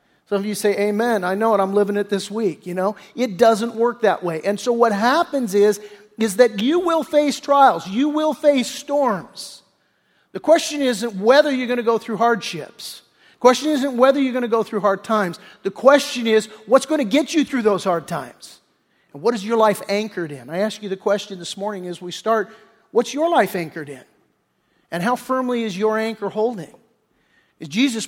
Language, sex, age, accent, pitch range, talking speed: English, male, 50-69, American, 200-250 Hz, 210 wpm